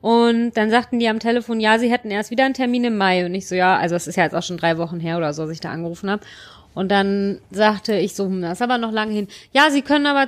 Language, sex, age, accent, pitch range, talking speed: German, female, 30-49, German, 210-255 Hz, 300 wpm